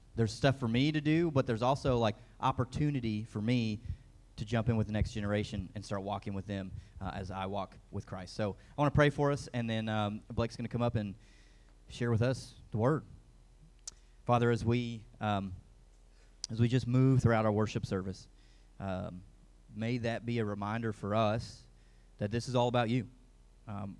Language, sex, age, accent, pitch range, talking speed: English, male, 30-49, American, 105-125 Hz, 200 wpm